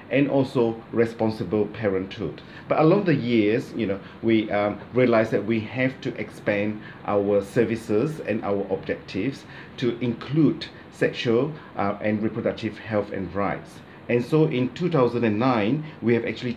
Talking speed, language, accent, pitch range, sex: 140 wpm, English, Malaysian, 105-130 Hz, male